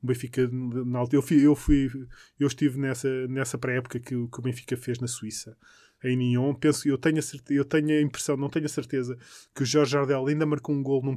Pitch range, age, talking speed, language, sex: 125-140 Hz, 20-39, 225 wpm, Portuguese, male